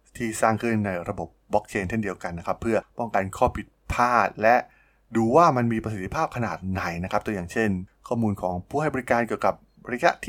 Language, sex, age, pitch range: Thai, male, 20-39, 95-115 Hz